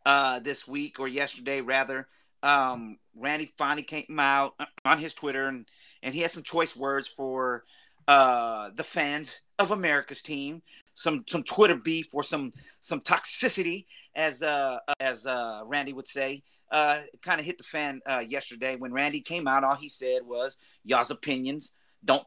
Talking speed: 165 wpm